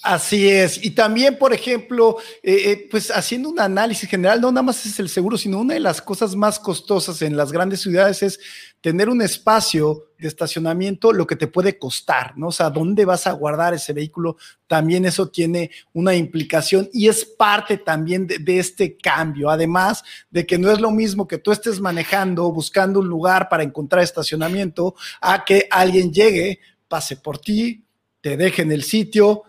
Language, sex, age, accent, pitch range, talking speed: Spanish, male, 40-59, Mexican, 170-215 Hz, 185 wpm